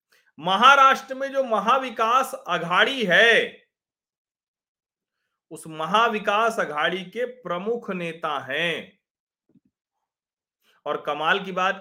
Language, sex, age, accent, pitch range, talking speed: Hindi, male, 40-59, native, 190-245 Hz, 85 wpm